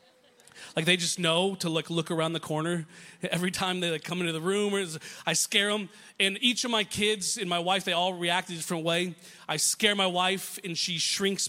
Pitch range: 175-225 Hz